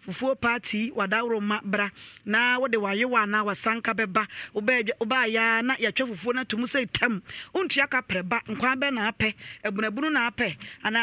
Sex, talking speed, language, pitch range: female, 175 wpm, English, 215-255 Hz